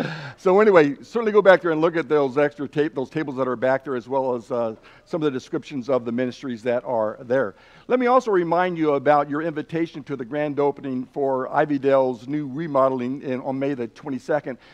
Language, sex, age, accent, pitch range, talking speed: English, male, 60-79, American, 130-160 Hz, 215 wpm